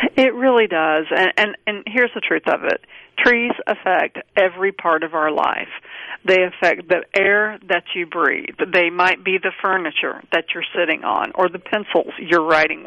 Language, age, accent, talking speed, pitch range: English, 40-59, American, 180 wpm, 175-215 Hz